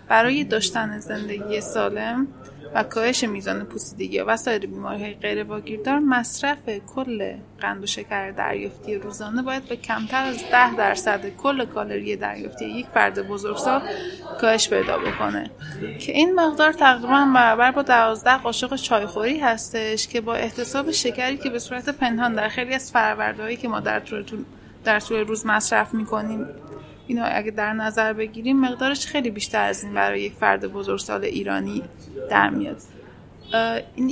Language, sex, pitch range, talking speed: Persian, female, 210-255 Hz, 150 wpm